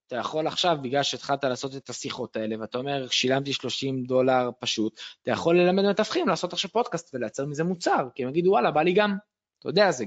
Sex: male